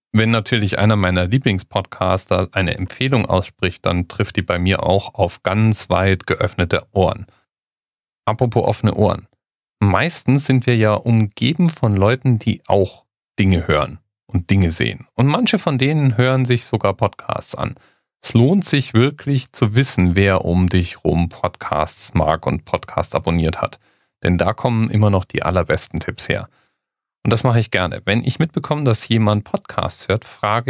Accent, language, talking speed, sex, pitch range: German, German, 160 wpm, male, 95-125 Hz